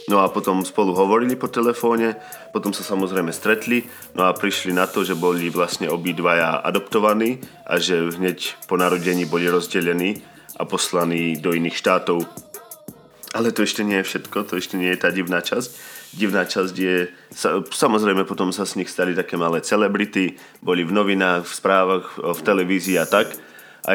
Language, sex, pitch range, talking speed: Slovak, male, 90-100 Hz, 170 wpm